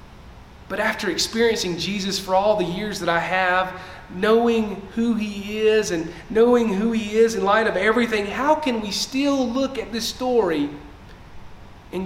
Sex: male